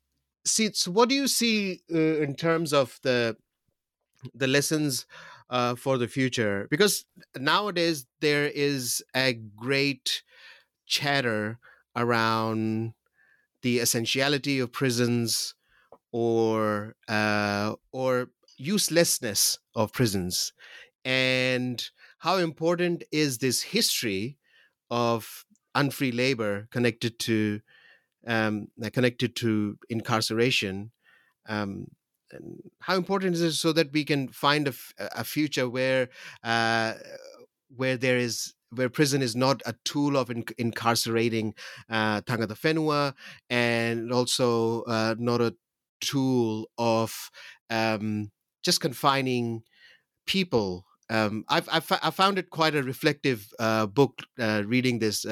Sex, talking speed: male, 115 wpm